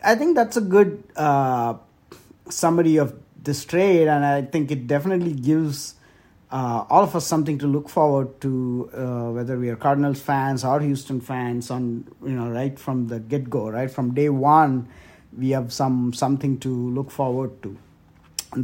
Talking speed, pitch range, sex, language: 175 wpm, 130-155 Hz, male, English